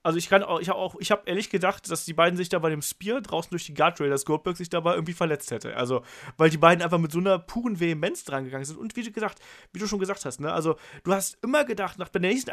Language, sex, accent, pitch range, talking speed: German, male, German, 150-195 Hz, 290 wpm